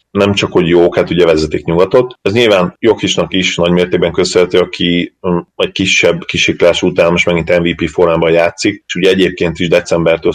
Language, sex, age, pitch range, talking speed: Hungarian, male, 30-49, 85-100 Hz, 180 wpm